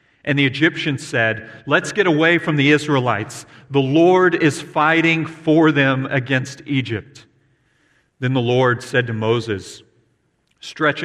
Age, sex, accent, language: 40-59, male, American, English